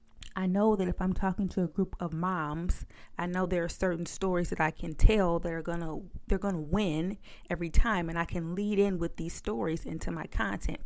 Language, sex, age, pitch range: English, female, 30-49, 165-190 Hz